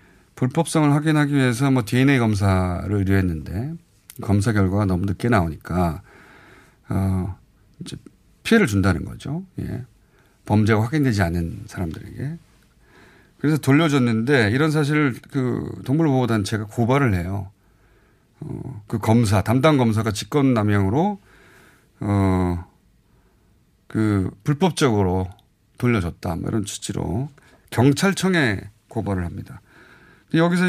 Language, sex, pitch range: Korean, male, 100-150 Hz